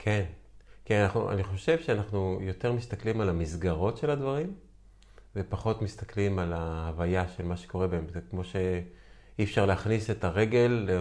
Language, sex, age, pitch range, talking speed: Hebrew, male, 30-49, 95-120 Hz, 145 wpm